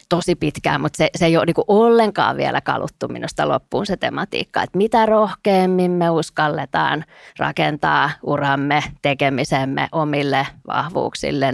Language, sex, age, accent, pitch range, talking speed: Finnish, female, 20-39, native, 155-195 Hz, 130 wpm